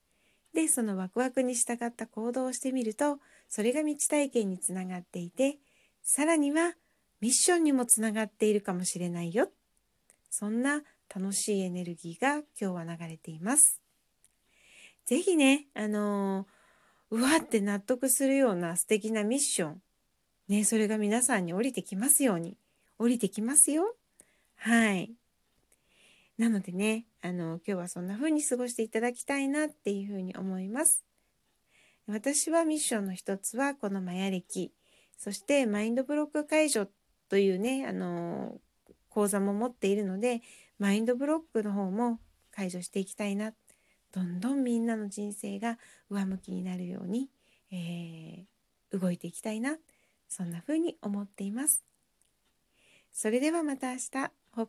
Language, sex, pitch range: Japanese, female, 195-265 Hz